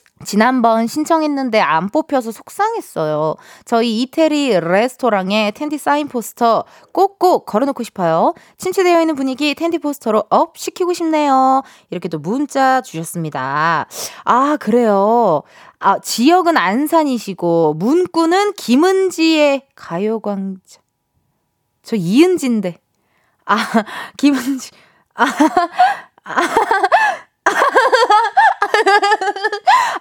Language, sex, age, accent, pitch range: Korean, female, 20-39, native, 220-325 Hz